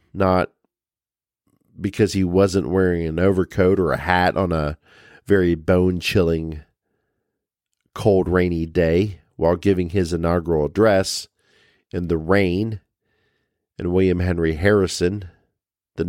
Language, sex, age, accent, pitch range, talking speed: English, male, 40-59, American, 85-100 Hz, 115 wpm